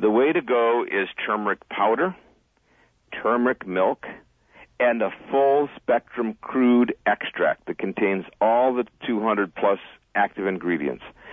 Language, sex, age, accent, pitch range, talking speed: English, male, 60-79, American, 110-155 Hz, 110 wpm